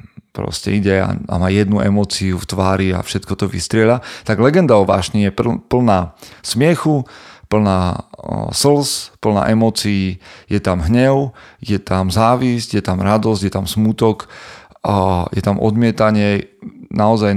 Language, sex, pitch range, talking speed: Slovak, male, 95-110 Hz, 135 wpm